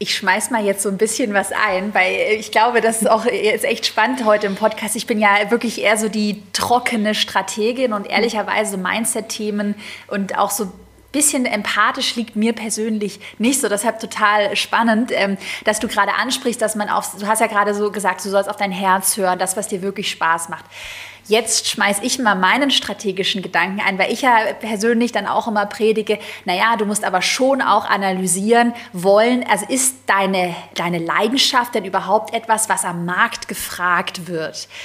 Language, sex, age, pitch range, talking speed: German, female, 20-39, 195-230 Hz, 185 wpm